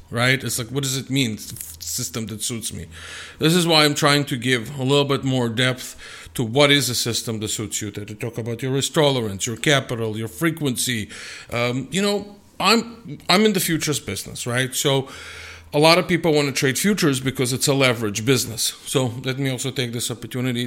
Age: 50-69